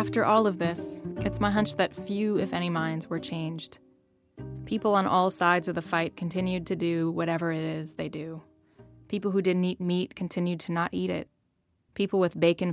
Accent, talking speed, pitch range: American, 200 wpm, 165-190 Hz